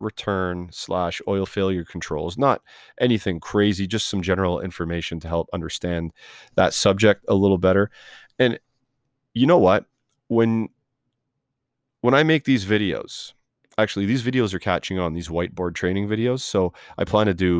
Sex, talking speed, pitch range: male, 155 wpm, 90-110 Hz